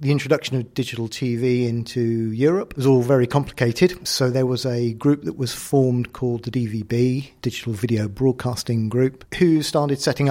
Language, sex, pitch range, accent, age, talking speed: English, male, 115-135 Hz, British, 40-59, 170 wpm